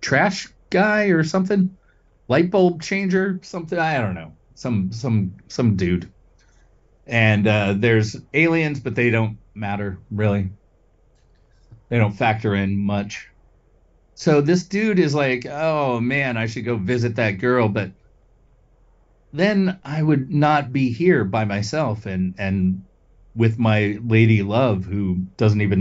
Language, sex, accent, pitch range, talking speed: English, male, American, 100-140 Hz, 140 wpm